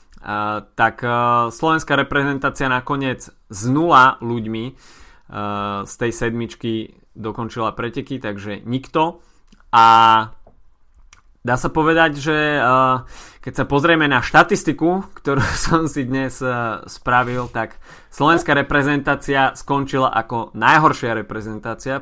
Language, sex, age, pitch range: Slovak, male, 20-39, 110-135 Hz